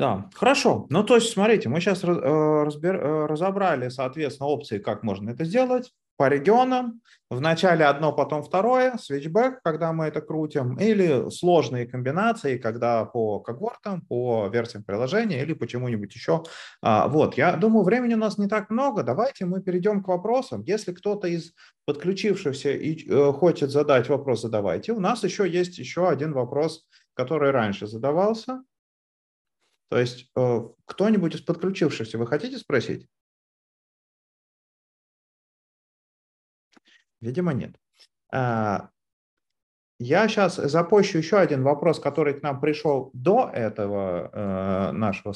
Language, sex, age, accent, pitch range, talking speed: Russian, male, 30-49, native, 125-200 Hz, 125 wpm